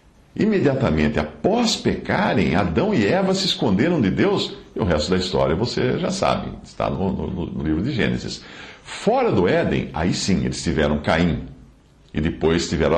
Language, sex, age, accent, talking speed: English, male, 60-79, Brazilian, 160 wpm